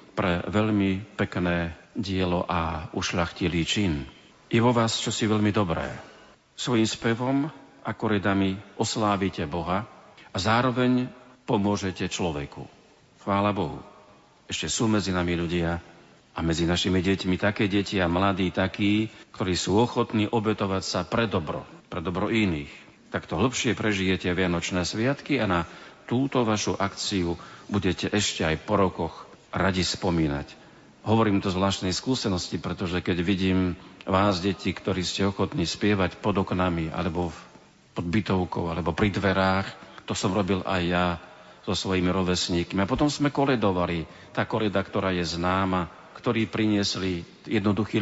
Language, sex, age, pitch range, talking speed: Slovak, male, 40-59, 90-110 Hz, 135 wpm